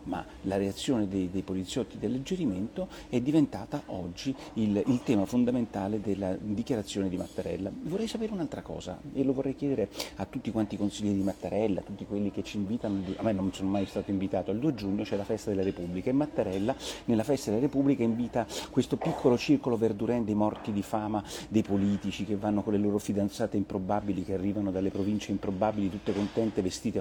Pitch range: 100-120 Hz